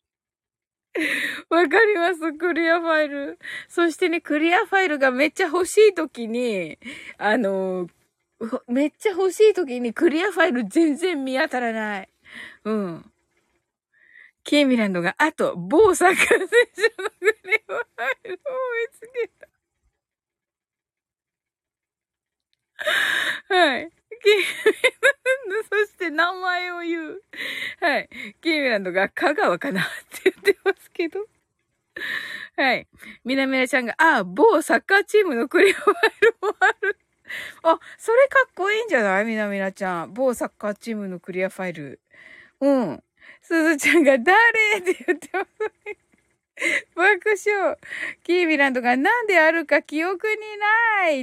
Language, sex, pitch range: Japanese, female, 270-420 Hz